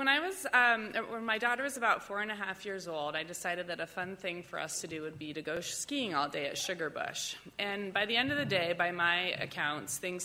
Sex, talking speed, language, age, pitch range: female, 265 wpm, English, 30-49, 165-230 Hz